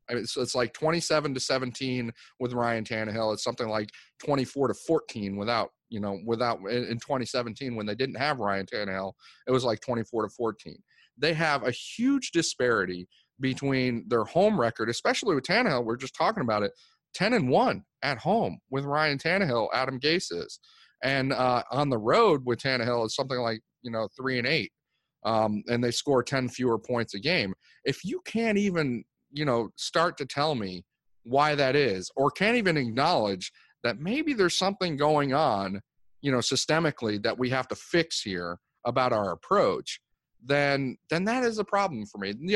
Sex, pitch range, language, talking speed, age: male, 115-145 Hz, English, 185 wpm, 30-49